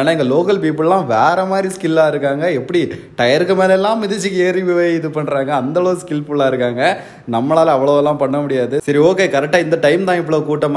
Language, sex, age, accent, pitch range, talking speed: Tamil, male, 20-39, native, 130-165 Hz, 60 wpm